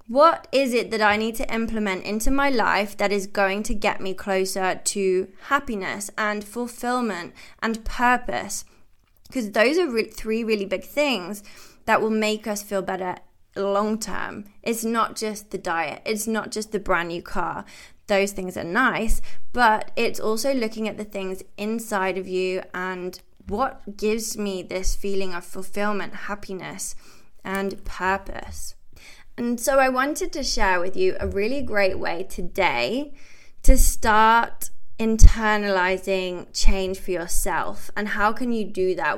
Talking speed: 155 wpm